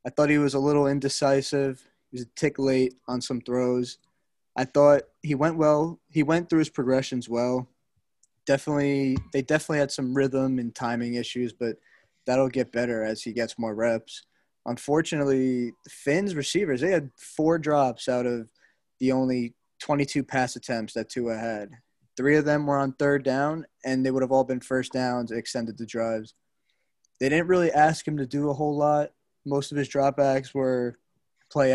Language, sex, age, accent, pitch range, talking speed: English, male, 20-39, American, 120-140 Hz, 180 wpm